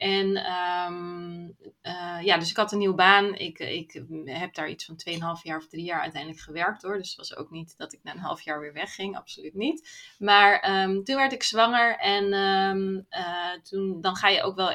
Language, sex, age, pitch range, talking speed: Dutch, female, 20-39, 175-205 Hz, 220 wpm